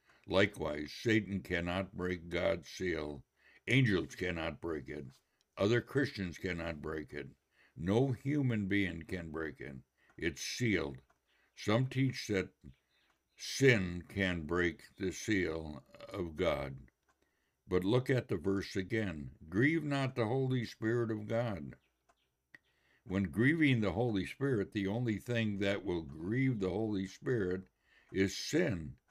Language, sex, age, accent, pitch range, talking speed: English, male, 60-79, American, 85-115 Hz, 130 wpm